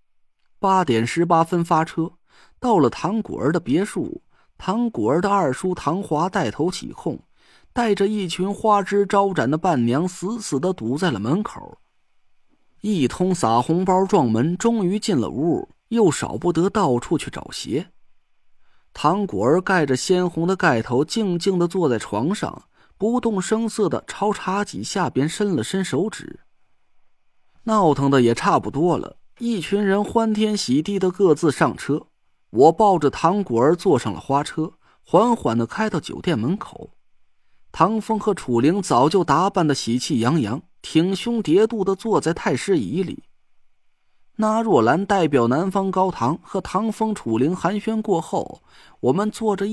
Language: Chinese